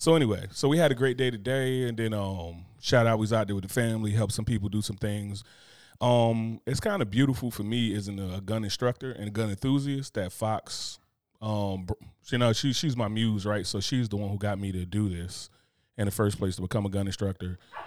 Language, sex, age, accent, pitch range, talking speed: English, male, 30-49, American, 100-120 Hz, 240 wpm